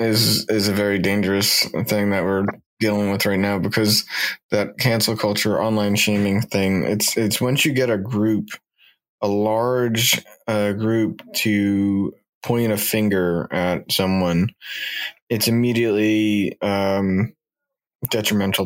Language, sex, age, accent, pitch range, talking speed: English, male, 20-39, American, 100-115 Hz, 130 wpm